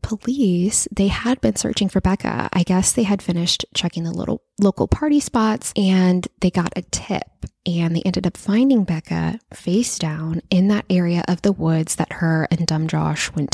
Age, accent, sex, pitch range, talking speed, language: 20-39, American, female, 170-225 Hz, 190 wpm, English